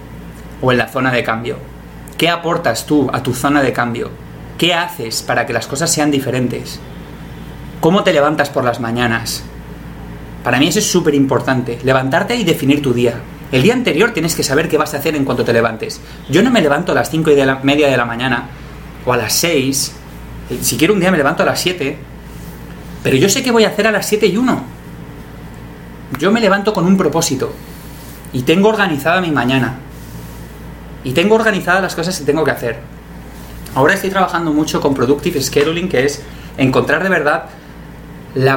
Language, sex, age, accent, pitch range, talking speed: Spanish, male, 30-49, Spanish, 125-165 Hz, 190 wpm